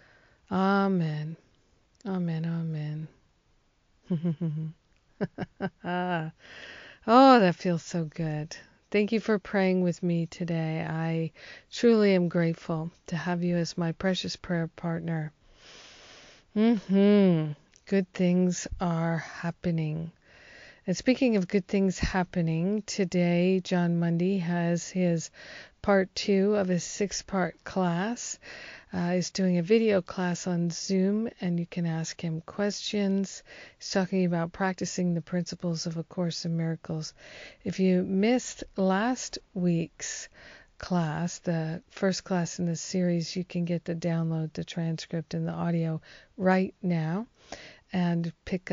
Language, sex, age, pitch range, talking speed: English, female, 40-59, 165-190 Hz, 125 wpm